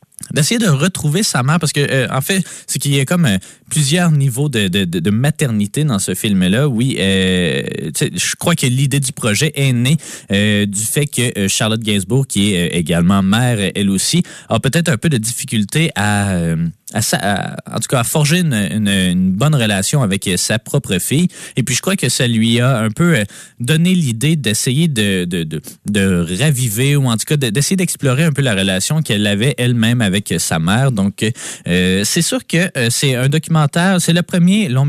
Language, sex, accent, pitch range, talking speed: French, male, Canadian, 105-155 Hz, 195 wpm